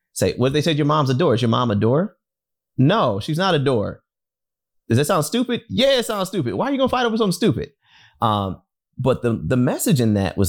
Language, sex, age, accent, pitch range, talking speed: English, male, 30-49, American, 90-120 Hz, 245 wpm